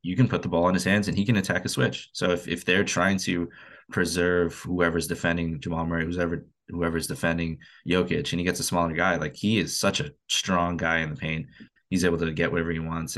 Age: 20-39